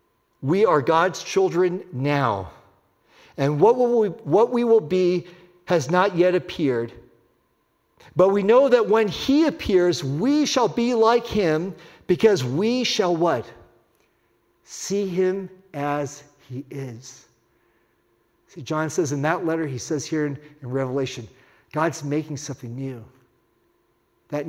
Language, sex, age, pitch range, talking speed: English, male, 50-69, 145-220 Hz, 135 wpm